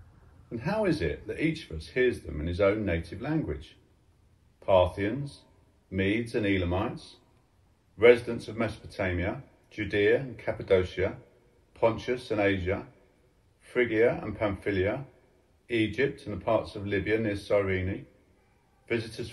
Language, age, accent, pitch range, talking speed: English, 50-69, British, 85-115 Hz, 125 wpm